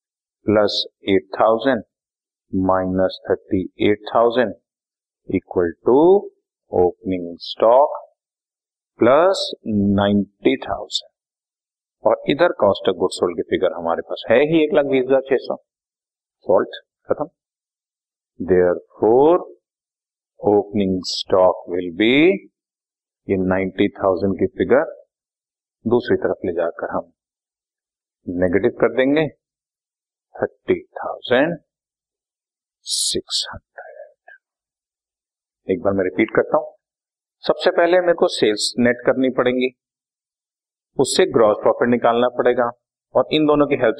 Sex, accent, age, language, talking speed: male, native, 50-69, Hindi, 100 wpm